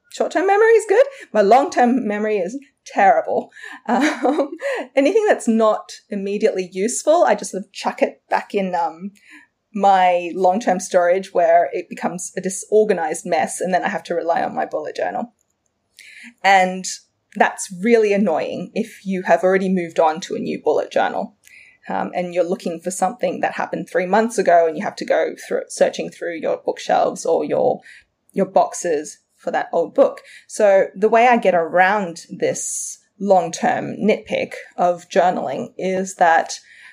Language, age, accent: English, 20-39, Australian